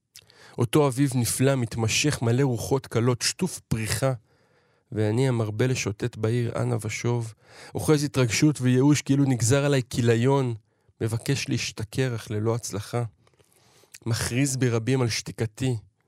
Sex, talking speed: male, 115 wpm